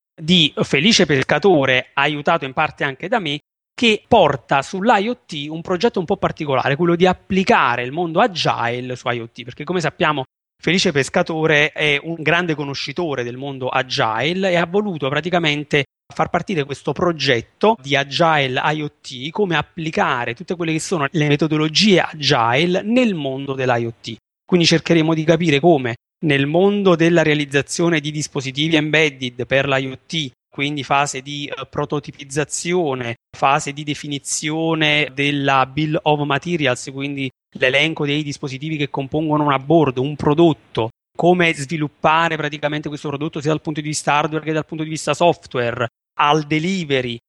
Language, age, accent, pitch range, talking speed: Italian, 30-49, native, 140-170 Hz, 145 wpm